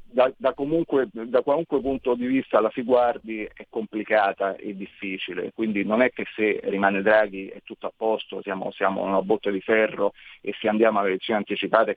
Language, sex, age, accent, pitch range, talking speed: Italian, male, 40-59, native, 110-135 Hz, 190 wpm